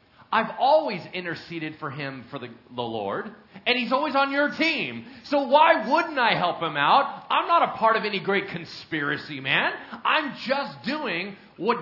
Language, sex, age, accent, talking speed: English, male, 40-59, American, 180 wpm